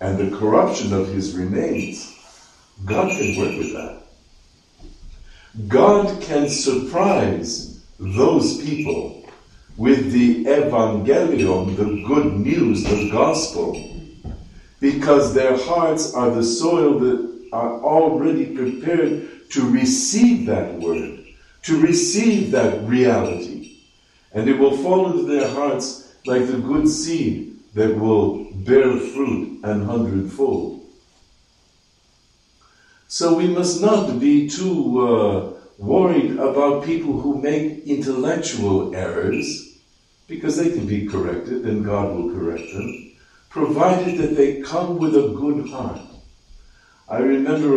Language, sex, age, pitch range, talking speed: English, male, 60-79, 105-160 Hz, 115 wpm